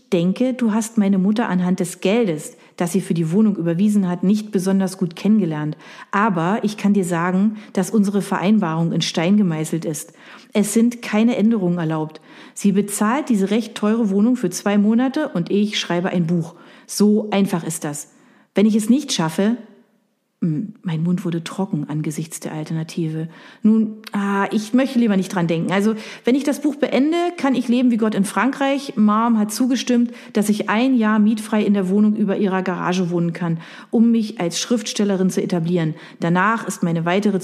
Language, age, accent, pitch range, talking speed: German, 40-59, German, 175-220 Hz, 185 wpm